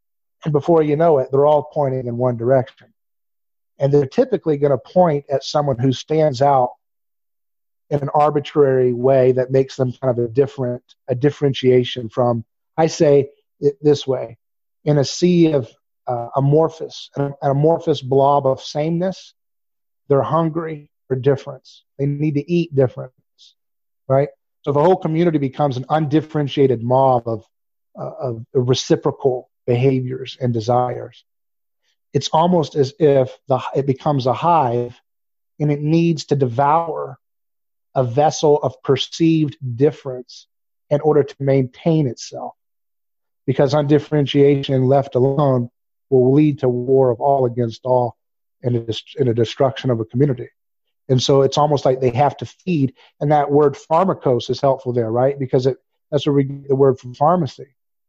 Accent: American